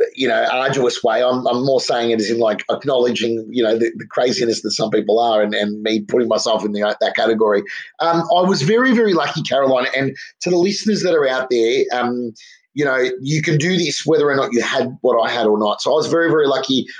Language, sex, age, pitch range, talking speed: English, male, 30-49, 115-160 Hz, 245 wpm